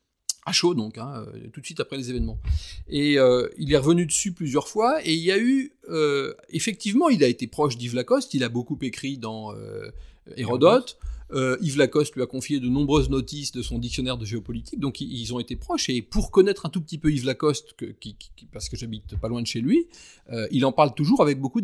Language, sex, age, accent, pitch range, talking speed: French, male, 30-49, French, 125-175 Hz, 235 wpm